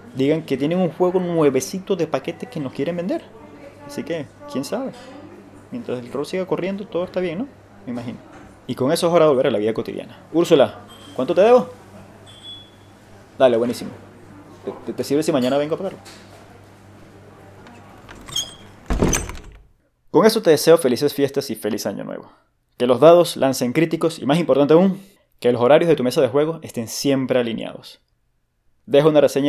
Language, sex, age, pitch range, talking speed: English, male, 20-39, 115-165 Hz, 170 wpm